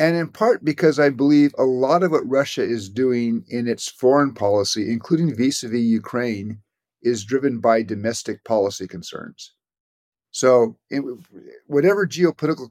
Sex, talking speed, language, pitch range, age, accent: male, 135 wpm, English, 110-140 Hz, 50-69, American